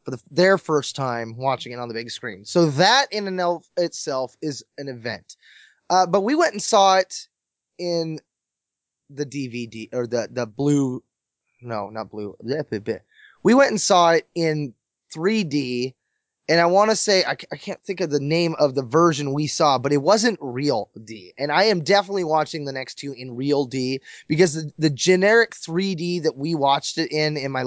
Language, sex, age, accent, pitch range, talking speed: English, male, 20-39, American, 135-180 Hz, 195 wpm